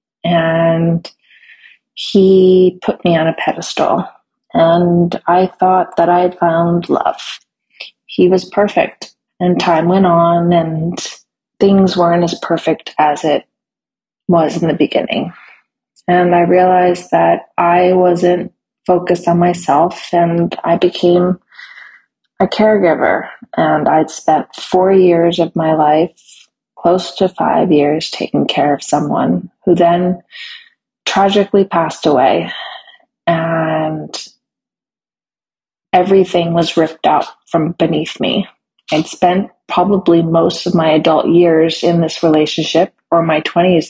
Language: English